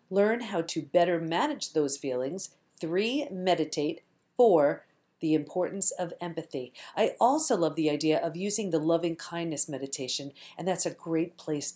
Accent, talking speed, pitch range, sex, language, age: American, 155 wpm, 175-235 Hz, female, English, 40-59